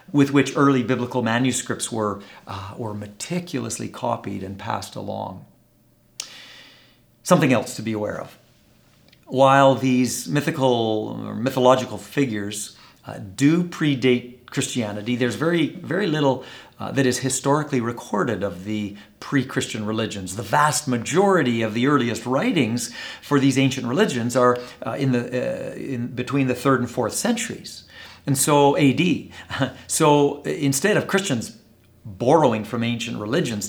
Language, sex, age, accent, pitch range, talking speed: English, male, 50-69, American, 100-130 Hz, 135 wpm